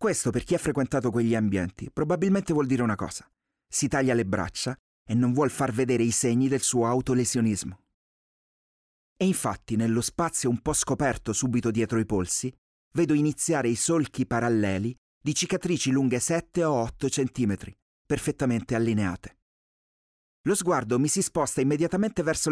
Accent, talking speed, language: native, 155 wpm, Italian